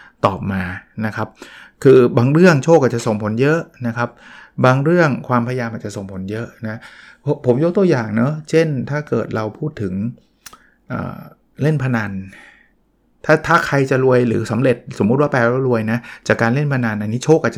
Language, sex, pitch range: Thai, male, 120-160 Hz